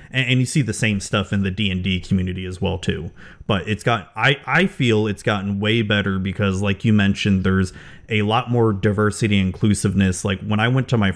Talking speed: 225 wpm